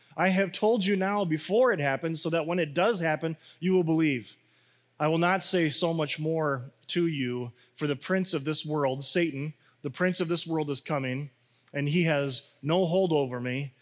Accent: American